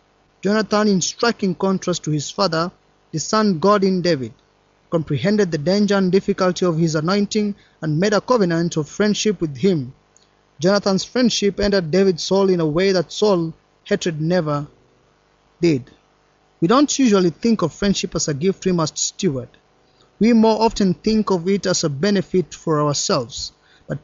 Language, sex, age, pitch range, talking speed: English, male, 30-49, 165-200 Hz, 160 wpm